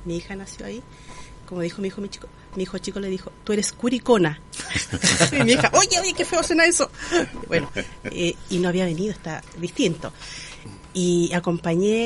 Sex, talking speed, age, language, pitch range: female, 185 wpm, 40-59, Spanish, 170-230 Hz